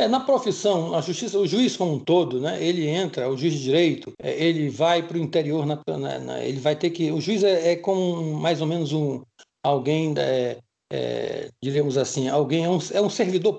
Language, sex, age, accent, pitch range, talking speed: Portuguese, male, 60-79, Brazilian, 150-190 Hz, 185 wpm